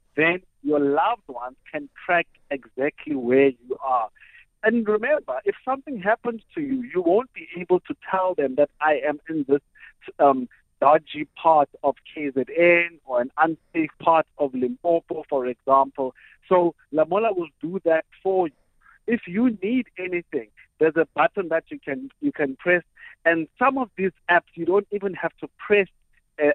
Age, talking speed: 50-69, 165 wpm